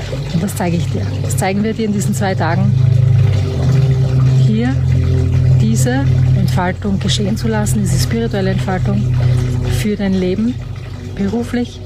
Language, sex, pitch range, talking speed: German, female, 110-170 Hz, 130 wpm